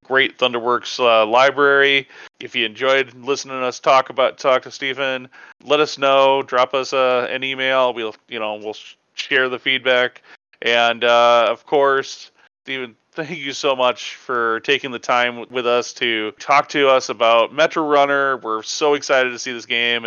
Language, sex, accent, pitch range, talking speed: English, male, American, 110-135 Hz, 175 wpm